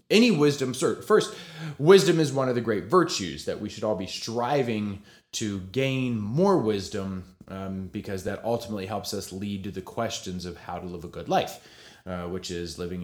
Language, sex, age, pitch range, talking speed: English, male, 20-39, 100-135 Hz, 195 wpm